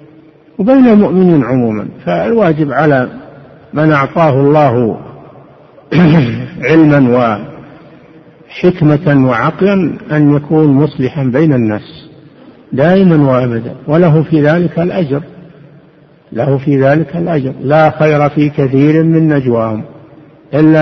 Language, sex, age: Arabic, male, 60-79